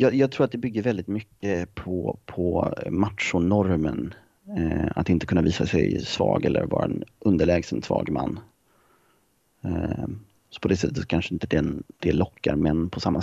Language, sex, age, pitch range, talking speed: Swedish, male, 30-49, 90-115 Hz, 150 wpm